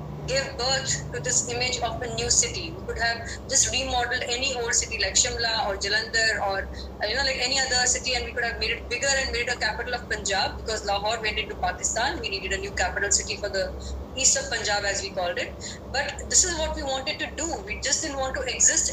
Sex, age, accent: female, 20-39, Indian